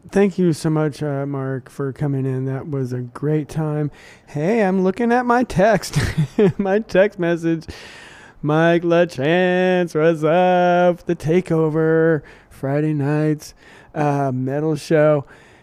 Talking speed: 130 wpm